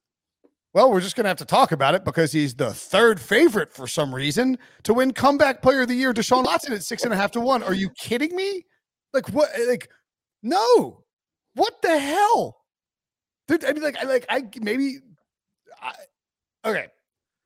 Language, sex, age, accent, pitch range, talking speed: English, male, 30-49, American, 200-280 Hz, 190 wpm